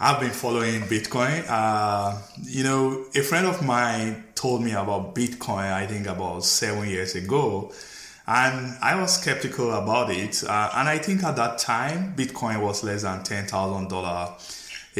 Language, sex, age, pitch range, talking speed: English, male, 20-39, 100-125 Hz, 155 wpm